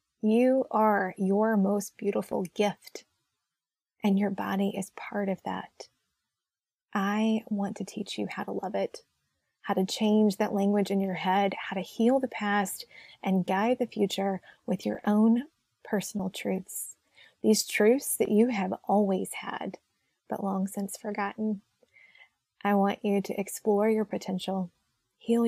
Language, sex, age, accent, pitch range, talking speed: English, female, 20-39, American, 190-215 Hz, 150 wpm